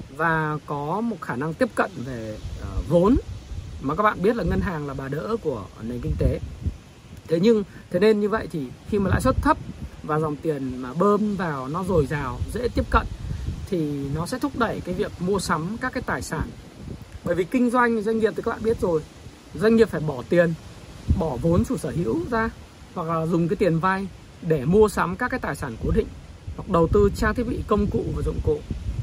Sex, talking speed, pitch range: male, 225 wpm, 145-210 Hz